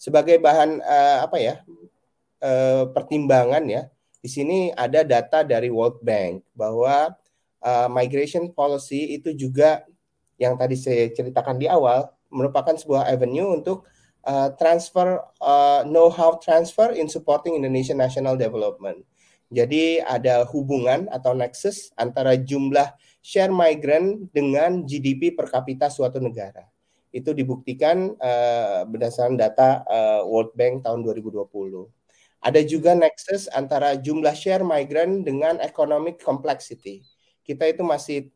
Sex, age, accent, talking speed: male, 30-49, native, 125 wpm